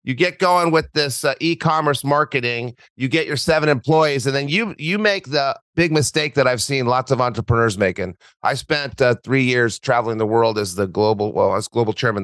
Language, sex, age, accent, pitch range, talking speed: English, male, 40-59, American, 115-170 Hz, 210 wpm